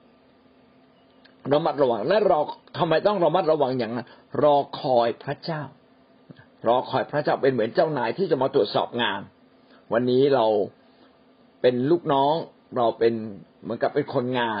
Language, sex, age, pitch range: Thai, male, 60-79, 130-155 Hz